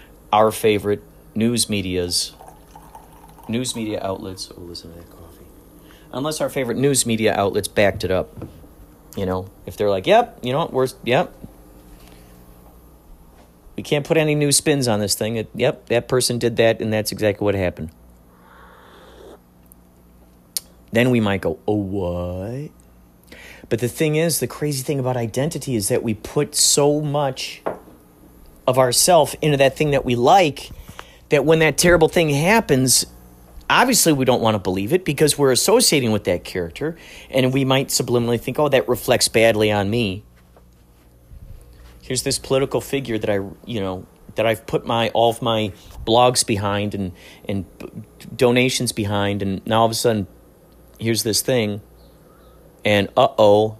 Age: 40-59